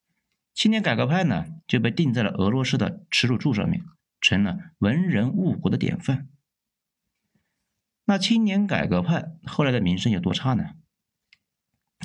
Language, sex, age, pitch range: Chinese, male, 50-69, 120-180 Hz